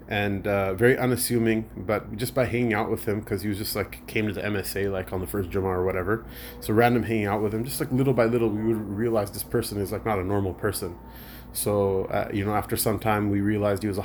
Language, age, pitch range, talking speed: English, 30-49, 100-110 Hz, 260 wpm